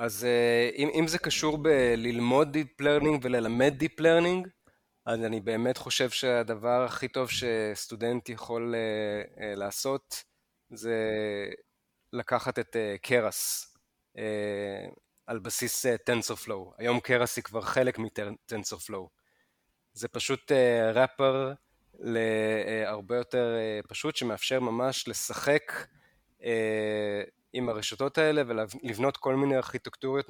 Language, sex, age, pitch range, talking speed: Hebrew, male, 20-39, 115-135 Hz, 100 wpm